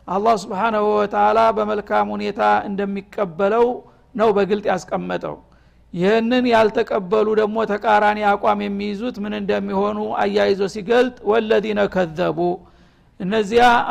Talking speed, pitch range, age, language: 100 wpm, 200-225 Hz, 60-79, Amharic